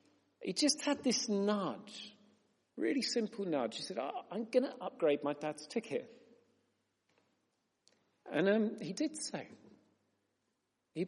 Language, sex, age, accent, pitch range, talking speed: English, male, 40-59, British, 145-215 Hz, 130 wpm